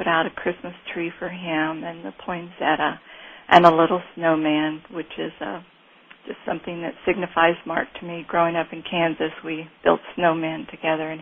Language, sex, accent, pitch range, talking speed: English, female, American, 165-185 Hz, 175 wpm